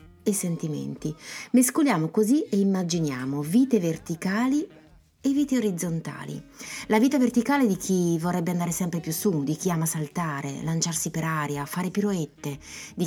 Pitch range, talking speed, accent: 155-210 Hz, 140 wpm, native